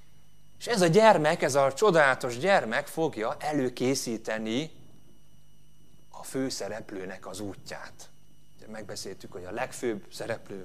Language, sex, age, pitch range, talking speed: Hungarian, male, 30-49, 120-165 Hz, 115 wpm